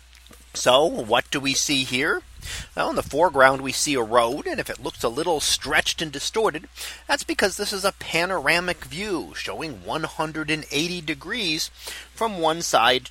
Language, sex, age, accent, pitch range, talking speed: English, male, 30-49, American, 135-180 Hz, 160 wpm